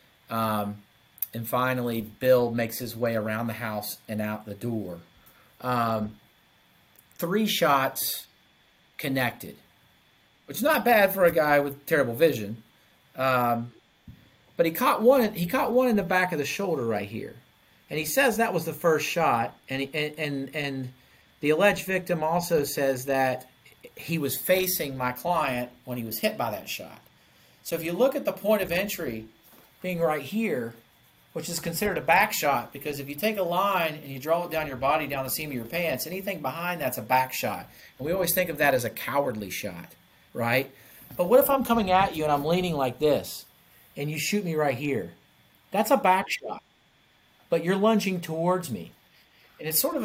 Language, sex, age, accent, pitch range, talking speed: English, male, 40-59, American, 125-175 Hz, 190 wpm